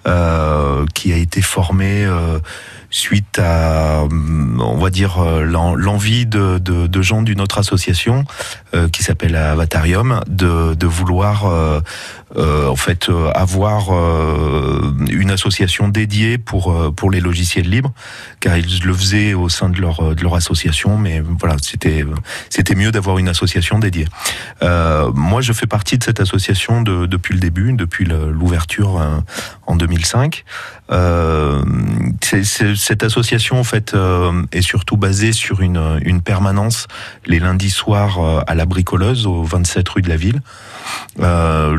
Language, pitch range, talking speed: French, 85-100 Hz, 160 wpm